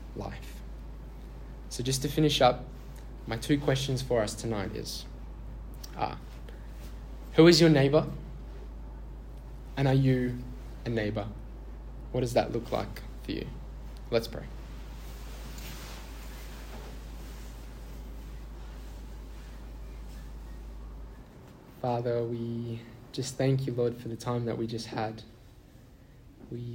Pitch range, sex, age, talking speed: 110-130 Hz, male, 20-39, 105 wpm